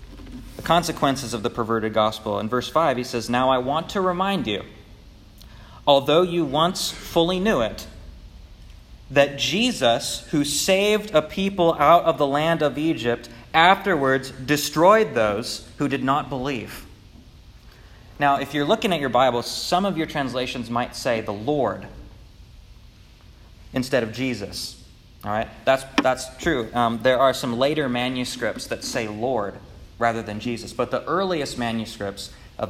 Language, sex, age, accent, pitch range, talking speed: English, male, 30-49, American, 110-150 Hz, 150 wpm